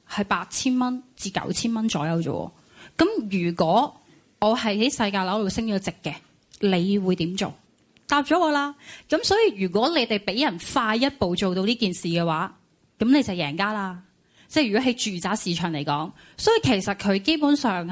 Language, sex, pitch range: Chinese, female, 185-255 Hz